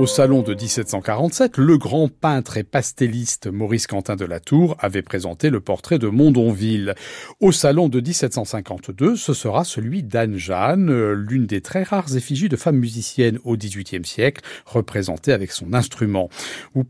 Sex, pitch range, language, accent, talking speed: male, 115-170 Hz, French, French, 160 wpm